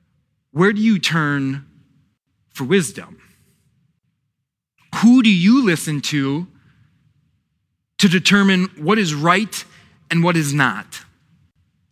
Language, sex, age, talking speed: English, male, 20-39, 100 wpm